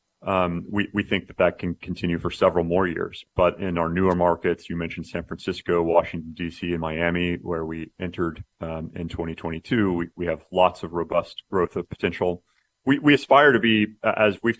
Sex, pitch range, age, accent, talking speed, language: male, 85-95 Hz, 40-59, American, 195 wpm, English